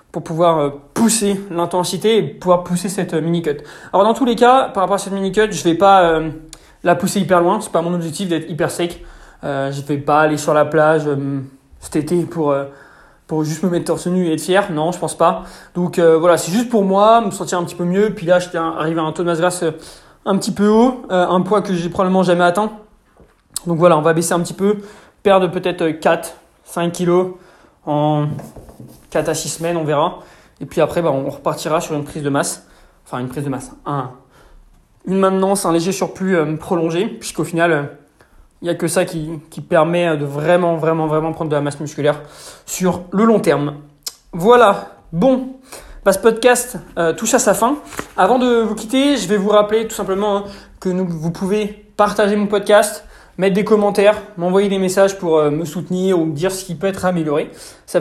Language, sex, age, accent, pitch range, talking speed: French, male, 20-39, French, 160-200 Hz, 215 wpm